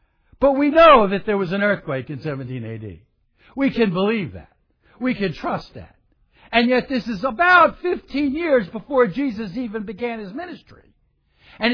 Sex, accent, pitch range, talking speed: male, American, 190-310 Hz, 170 wpm